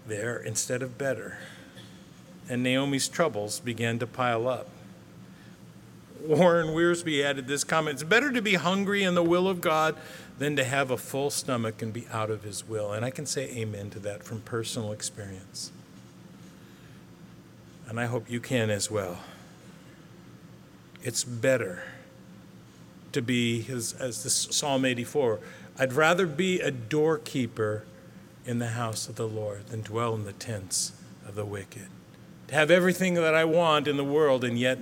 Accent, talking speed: American, 160 wpm